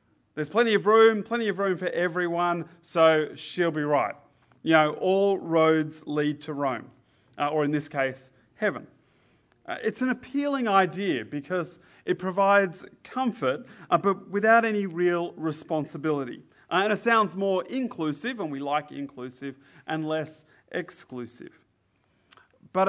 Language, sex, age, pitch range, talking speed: English, male, 30-49, 140-180 Hz, 145 wpm